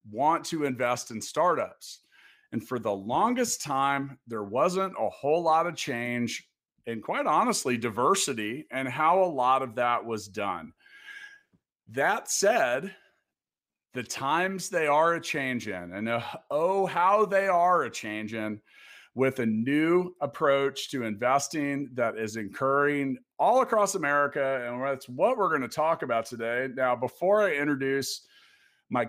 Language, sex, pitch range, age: English, male, 120-160 Hz, 40-59